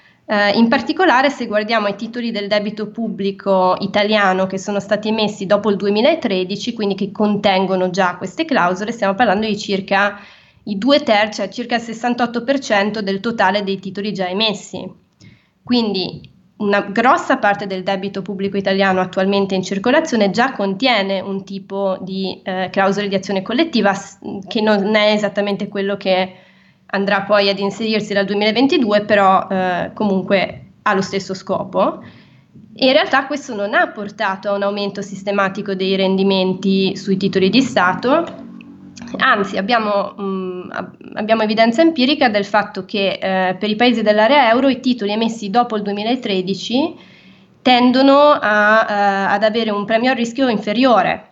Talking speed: 150 wpm